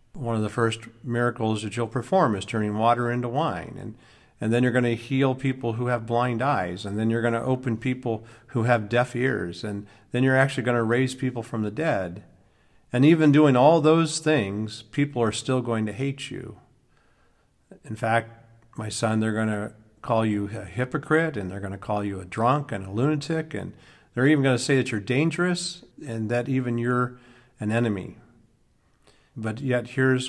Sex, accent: male, American